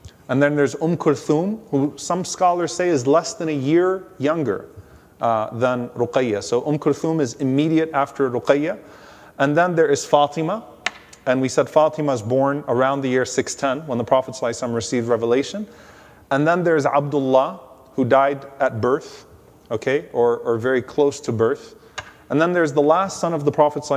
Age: 30-49